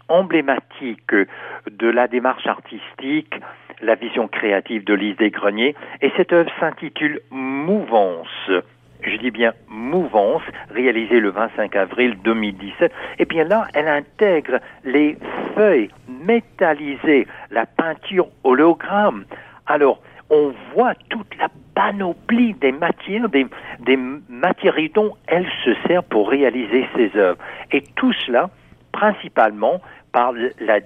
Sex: male